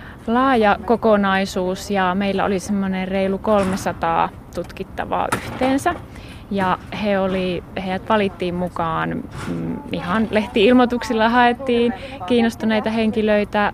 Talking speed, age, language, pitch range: 95 wpm, 20-39, Finnish, 180-215 Hz